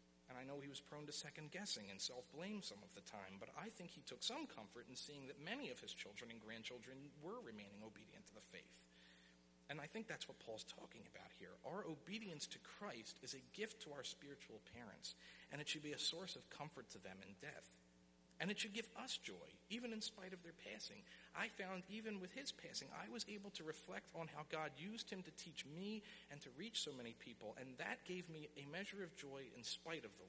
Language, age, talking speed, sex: English, 50-69, 230 wpm, male